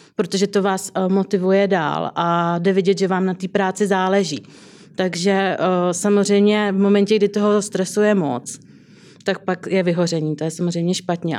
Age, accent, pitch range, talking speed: 30-49, native, 180-200 Hz, 160 wpm